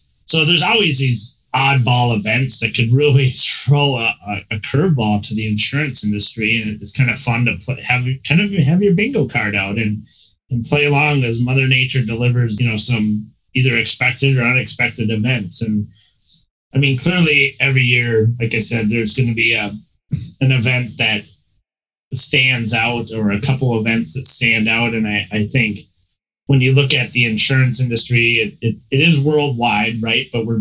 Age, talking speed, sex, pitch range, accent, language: 30-49, 180 wpm, male, 110-130 Hz, American, English